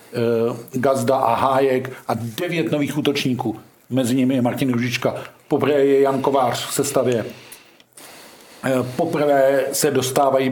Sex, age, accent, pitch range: male, 50-69, native, 135-145 Hz